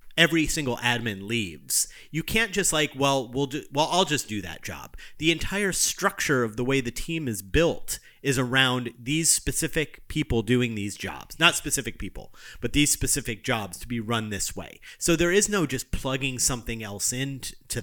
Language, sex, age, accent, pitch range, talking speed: English, male, 30-49, American, 120-155 Hz, 190 wpm